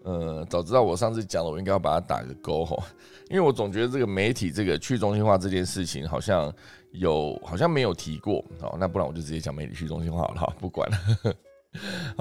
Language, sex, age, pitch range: Chinese, male, 20-39, 80-105 Hz